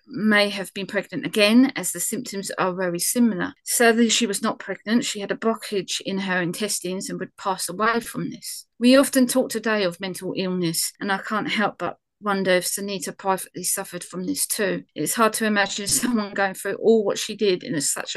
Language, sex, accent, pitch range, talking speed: English, female, British, 185-225 Hz, 205 wpm